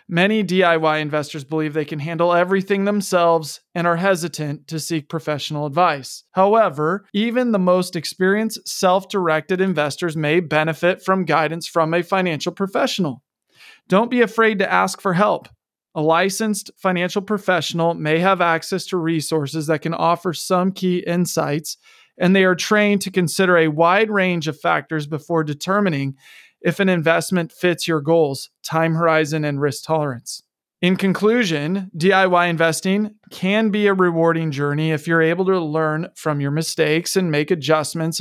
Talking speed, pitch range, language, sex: 150 wpm, 155-190 Hz, English, male